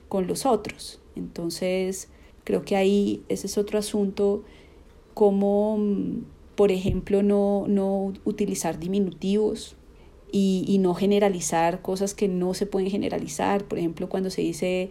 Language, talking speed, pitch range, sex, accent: Spanish, 135 wpm, 170-195 Hz, female, Colombian